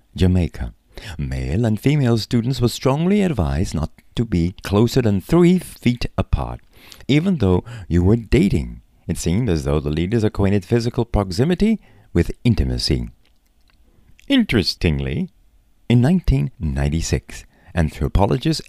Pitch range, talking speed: 80-115 Hz, 115 wpm